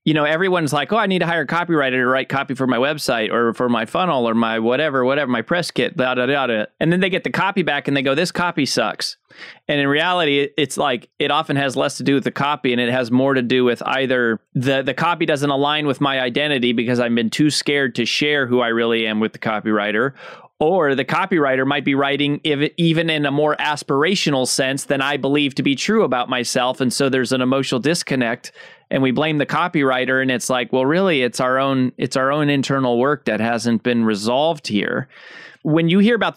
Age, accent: 20-39, American